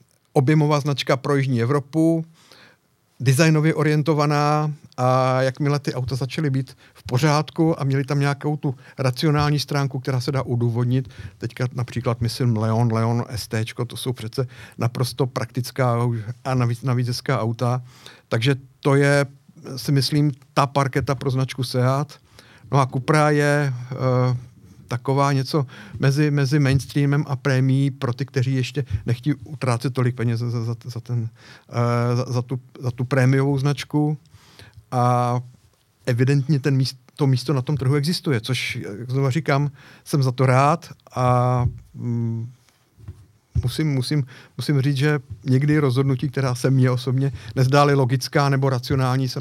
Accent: native